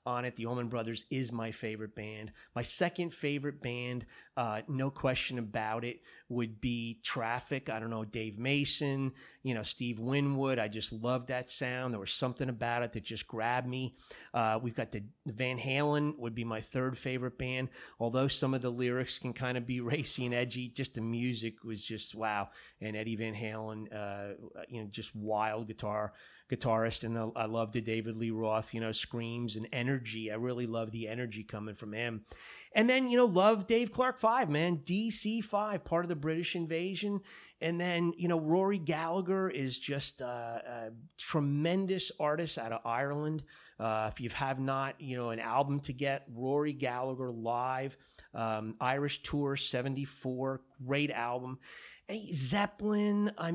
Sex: male